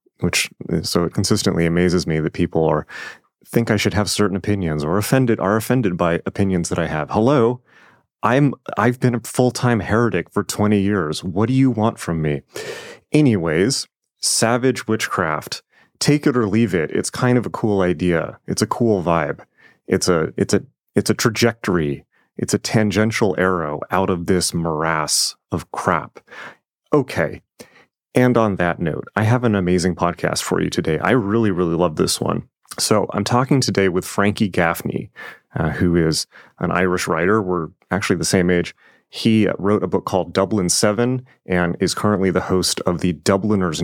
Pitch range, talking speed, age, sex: 90-110 Hz, 175 wpm, 30-49, male